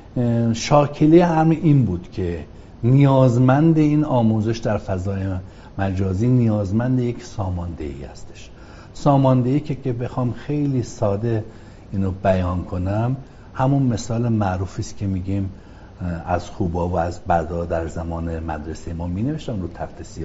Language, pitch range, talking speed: Persian, 95-130 Hz, 125 wpm